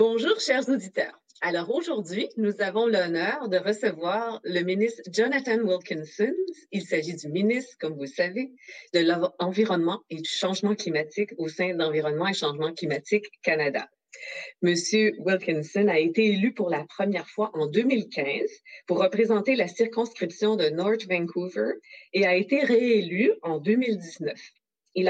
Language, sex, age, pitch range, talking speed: French, female, 40-59, 180-240 Hz, 145 wpm